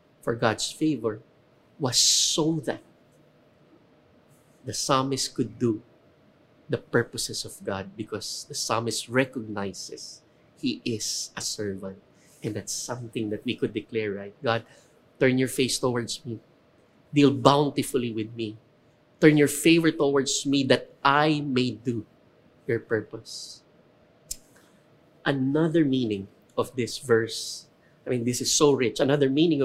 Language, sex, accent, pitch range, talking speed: English, male, Filipino, 120-150 Hz, 130 wpm